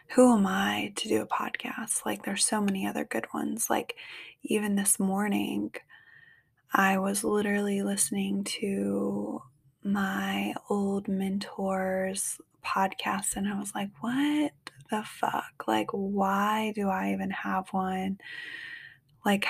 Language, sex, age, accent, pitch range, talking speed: English, female, 20-39, American, 185-210 Hz, 130 wpm